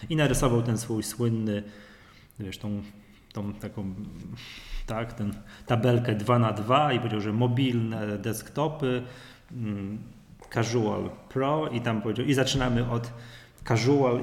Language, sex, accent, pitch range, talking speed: Polish, male, native, 110-125 Hz, 120 wpm